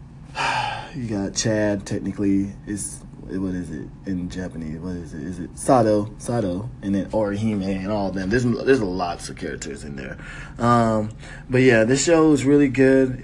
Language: English